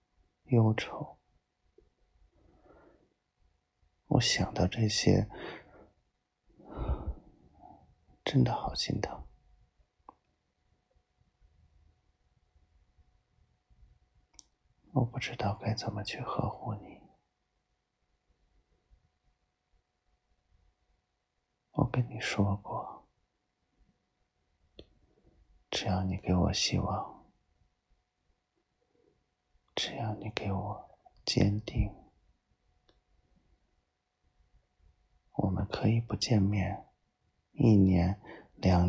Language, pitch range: Chinese, 75-100 Hz